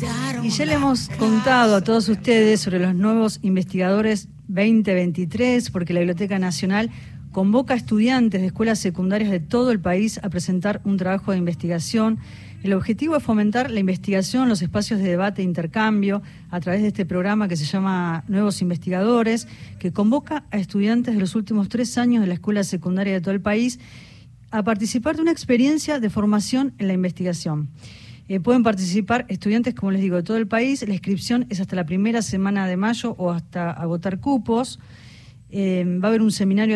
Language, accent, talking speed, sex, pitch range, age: Spanish, Argentinian, 185 wpm, female, 185-225 Hz, 40-59